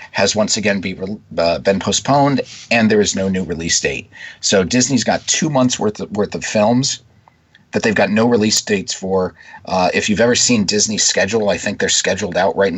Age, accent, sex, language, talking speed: 40-59, American, male, English, 195 wpm